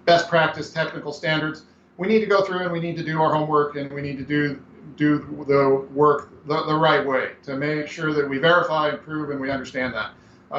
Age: 40-59